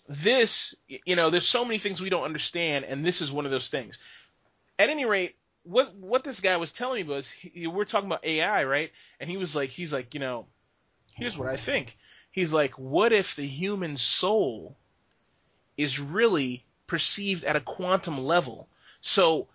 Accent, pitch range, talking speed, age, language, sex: American, 145-195 Hz, 190 wpm, 30-49, English, male